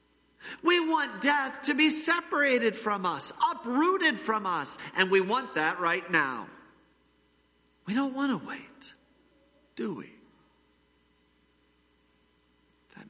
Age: 50-69